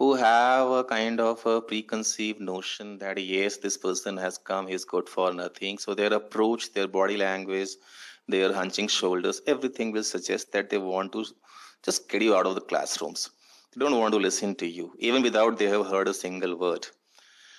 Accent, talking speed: native, 195 wpm